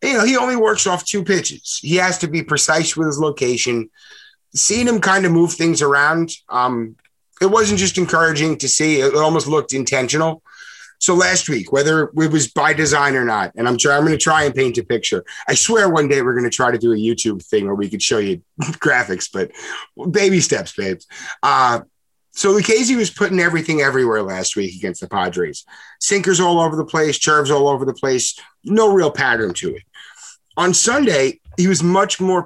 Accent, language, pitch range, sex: American, English, 130-180 Hz, male